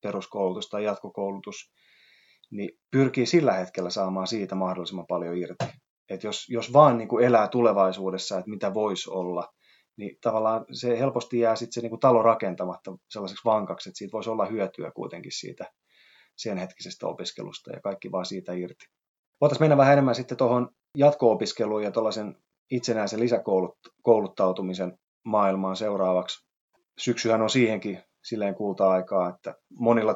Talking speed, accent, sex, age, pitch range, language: 145 wpm, native, male, 20-39, 95-120 Hz, Finnish